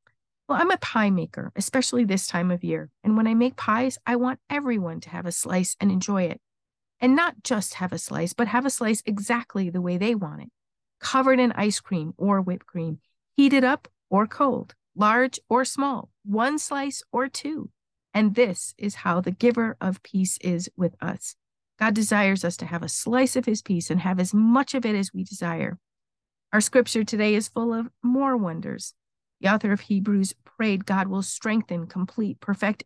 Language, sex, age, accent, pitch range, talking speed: English, female, 50-69, American, 190-240 Hz, 195 wpm